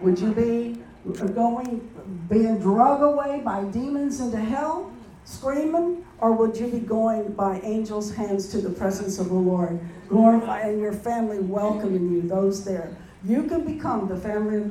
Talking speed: 160 wpm